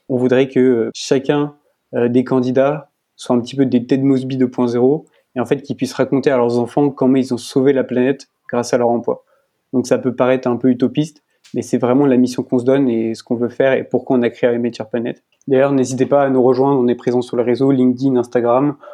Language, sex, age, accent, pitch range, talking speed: French, male, 20-39, French, 125-135 Hz, 235 wpm